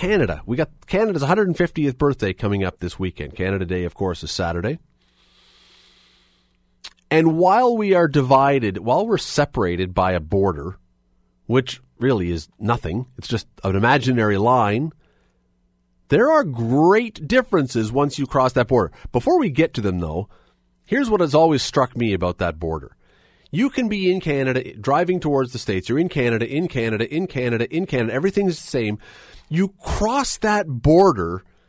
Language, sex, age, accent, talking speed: English, male, 40-59, American, 160 wpm